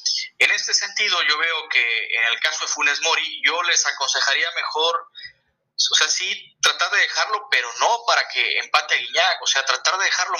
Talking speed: 195 wpm